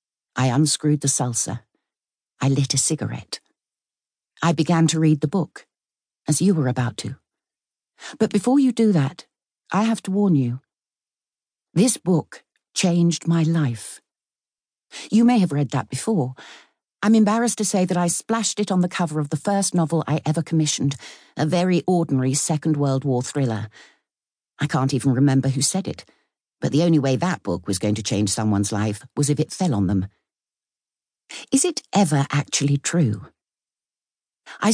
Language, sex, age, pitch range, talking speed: English, female, 60-79, 140-185 Hz, 165 wpm